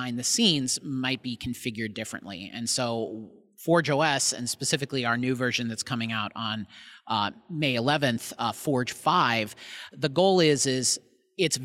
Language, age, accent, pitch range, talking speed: English, 30-49, American, 115-140 Hz, 155 wpm